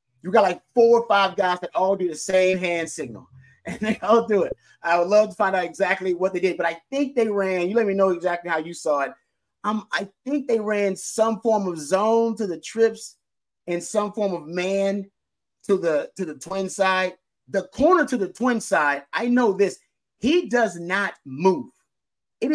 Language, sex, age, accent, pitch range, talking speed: English, male, 30-49, American, 165-220 Hz, 215 wpm